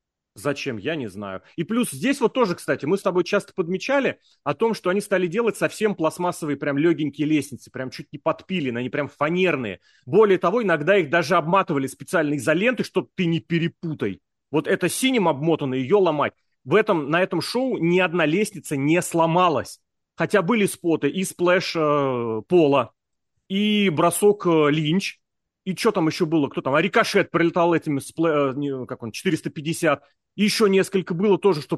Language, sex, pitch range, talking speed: Russian, male, 155-205 Hz, 180 wpm